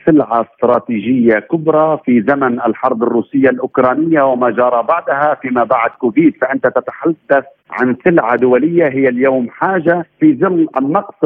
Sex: male